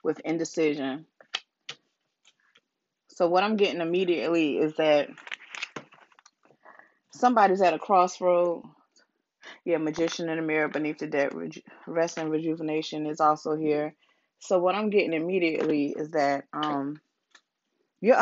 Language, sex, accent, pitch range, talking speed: English, female, American, 160-205 Hz, 120 wpm